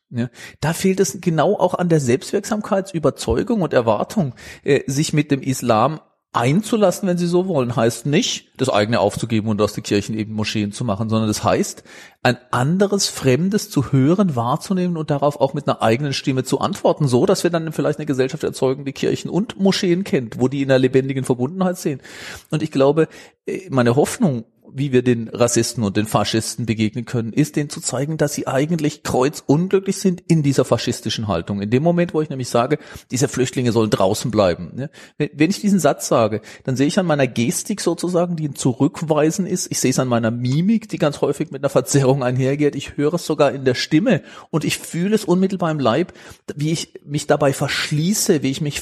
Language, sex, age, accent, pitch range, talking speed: English, male, 40-59, German, 125-165 Hz, 195 wpm